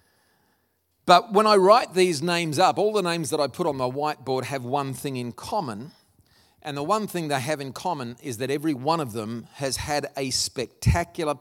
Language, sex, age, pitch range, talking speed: English, male, 40-59, 130-185 Hz, 205 wpm